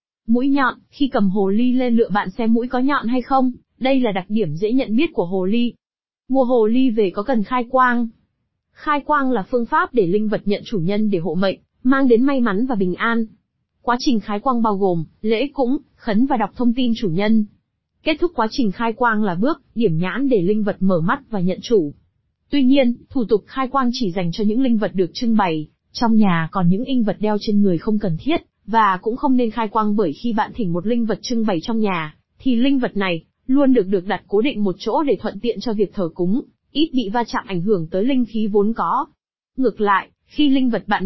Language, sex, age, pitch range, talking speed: Vietnamese, female, 20-39, 205-250 Hz, 245 wpm